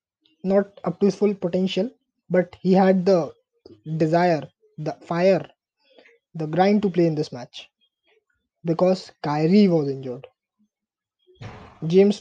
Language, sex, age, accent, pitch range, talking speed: Hindi, male, 20-39, native, 170-210 Hz, 125 wpm